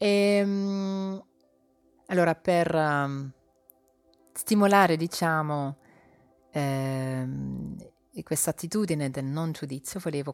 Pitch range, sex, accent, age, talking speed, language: 140-190 Hz, female, native, 30-49, 70 wpm, Italian